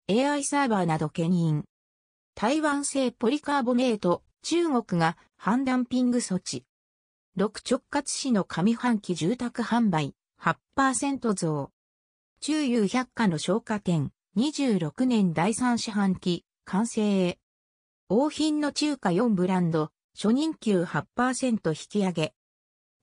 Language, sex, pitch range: Japanese, female, 170-255 Hz